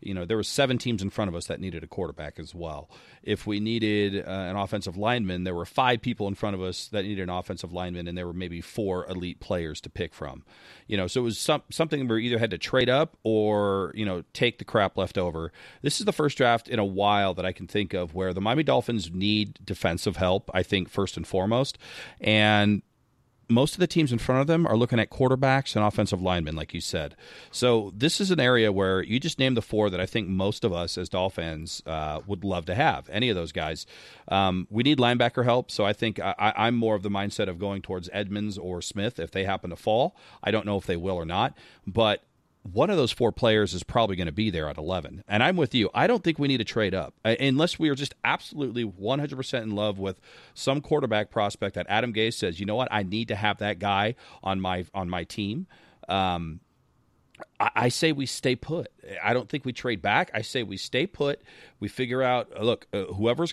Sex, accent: male, American